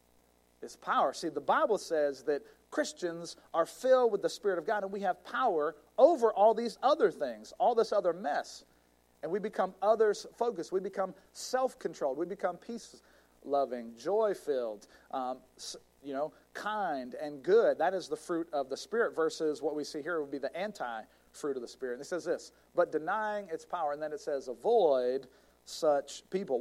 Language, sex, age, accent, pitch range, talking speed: English, male, 40-59, American, 140-225 Hz, 175 wpm